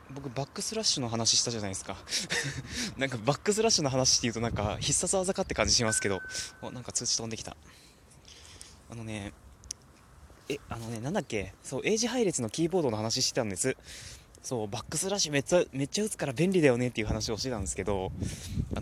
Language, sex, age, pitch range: Japanese, male, 20-39, 100-150 Hz